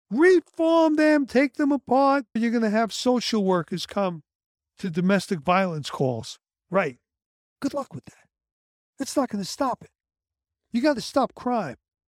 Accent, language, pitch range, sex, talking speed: American, English, 155-245 Hz, male, 155 wpm